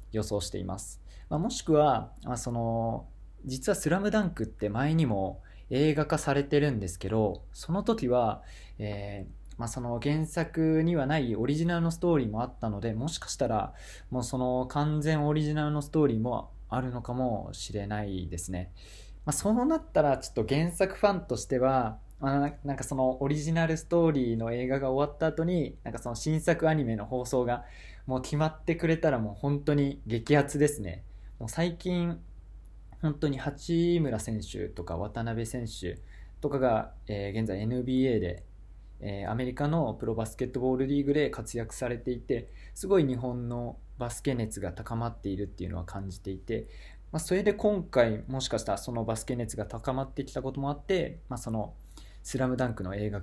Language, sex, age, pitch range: Japanese, male, 20-39, 100-150 Hz